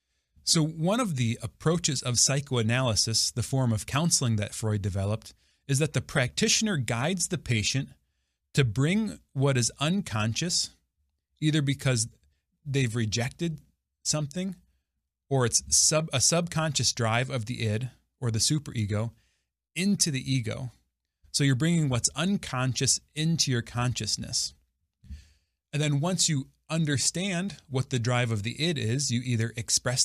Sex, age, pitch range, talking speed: male, 30-49, 105-140 Hz, 135 wpm